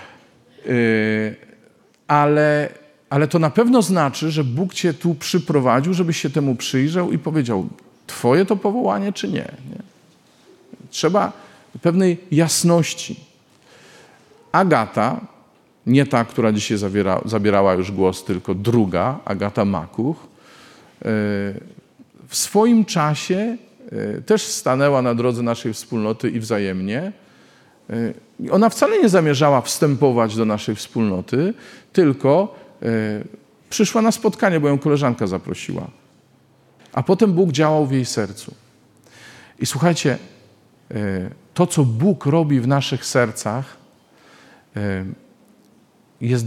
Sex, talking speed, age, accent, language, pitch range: male, 105 wpm, 40-59, native, Polish, 115-170 Hz